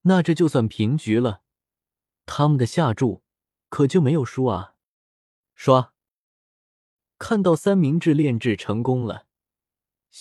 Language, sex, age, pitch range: Chinese, male, 20-39, 105-170 Hz